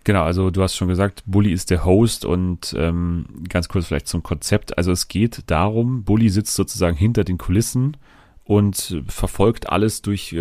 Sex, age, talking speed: male, 30-49, 180 wpm